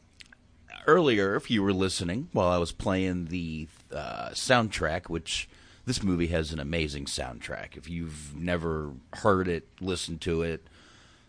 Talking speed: 145 wpm